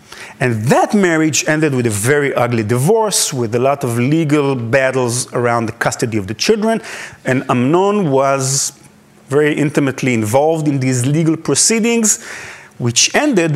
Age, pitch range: 30-49, 125-180 Hz